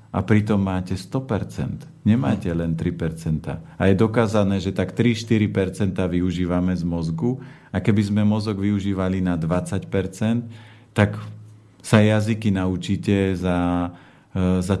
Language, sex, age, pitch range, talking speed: Slovak, male, 40-59, 95-115 Hz, 120 wpm